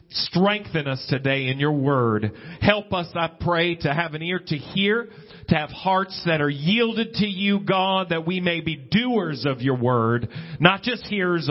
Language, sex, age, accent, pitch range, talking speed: English, male, 40-59, American, 135-190 Hz, 190 wpm